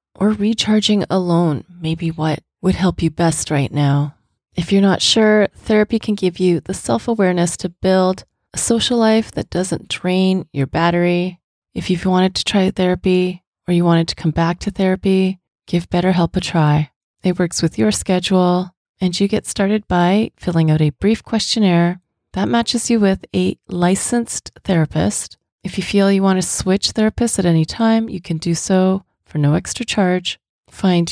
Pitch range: 165-205 Hz